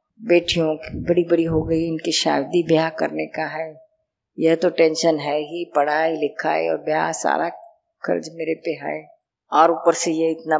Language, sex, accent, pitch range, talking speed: Hindi, female, native, 155-195 Hz, 170 wpm